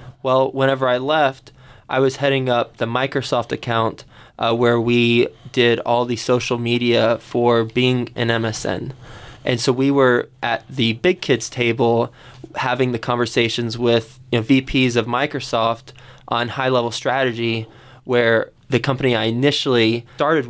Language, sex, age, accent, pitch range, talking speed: English, male, 20-39, American, 115-130 Hz, 140 wpm